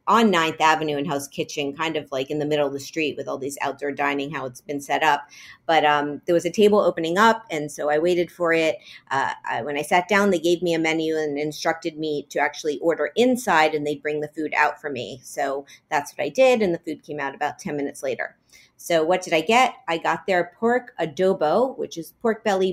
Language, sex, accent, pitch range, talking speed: English, female, American, 150-195 Hz, 245 wpm